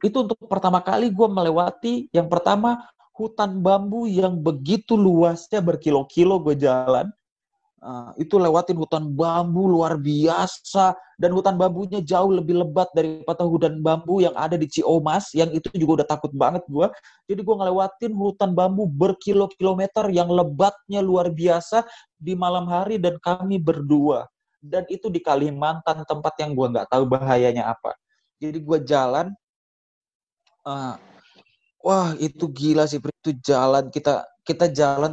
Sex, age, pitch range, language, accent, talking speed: male, 30-49, 155-200 Hz, Indonesian, native, 145 wpm